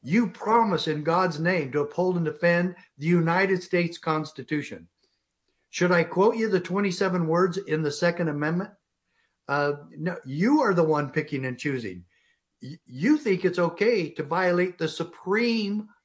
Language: English